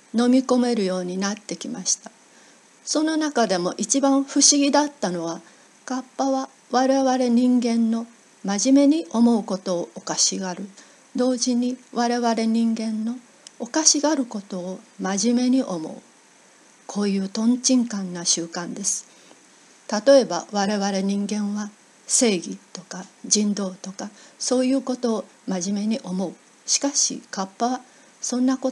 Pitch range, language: 195-255 Hz, Japanese